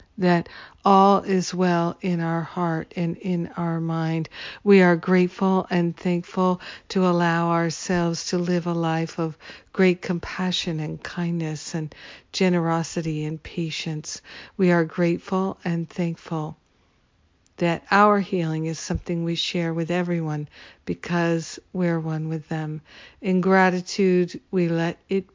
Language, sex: English, female